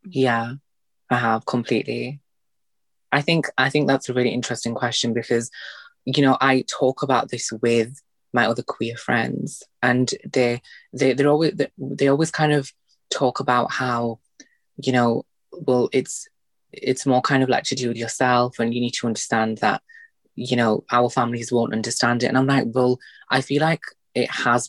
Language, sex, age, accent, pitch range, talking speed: English, female, 20-39, British, 115-135 Hz, 175 wpm